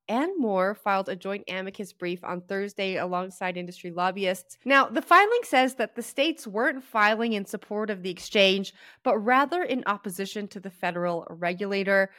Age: 20-39